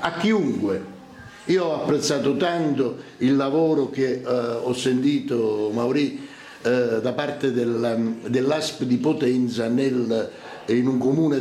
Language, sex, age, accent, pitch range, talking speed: Italian, male, 60-79, native, 125-155 Hz, 125 wpm